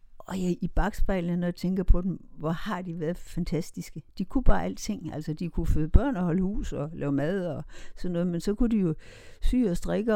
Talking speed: 235 wpm